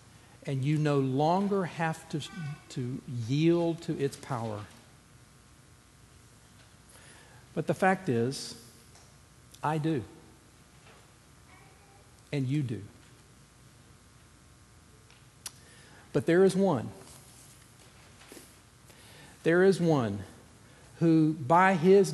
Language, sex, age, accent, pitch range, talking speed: English, male, 50-69, American, 120-155 Hz, 80 wpm